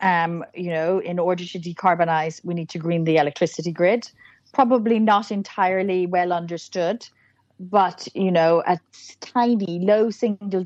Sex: female